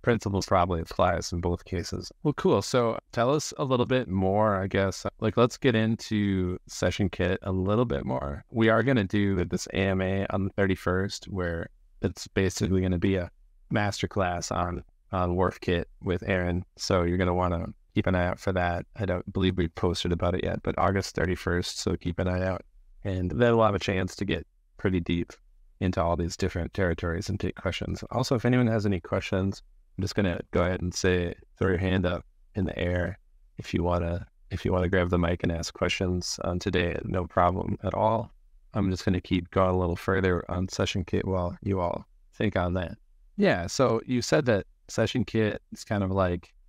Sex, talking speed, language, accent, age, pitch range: male, 210 wpm, English, American, 30-49, 90-100 Hz